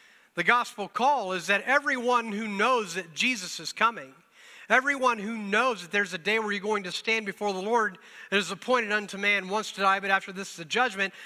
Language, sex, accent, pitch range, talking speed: English, male, American, 195-250 Hz, 220 wpm